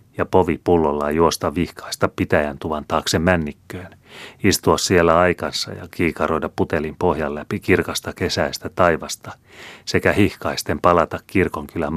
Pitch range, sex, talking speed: 75-95 Hz, male, 125 wpm